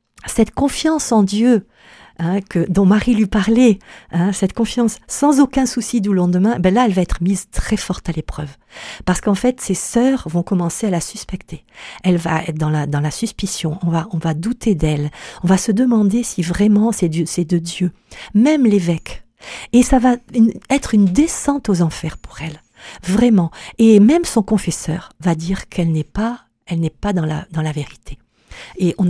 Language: French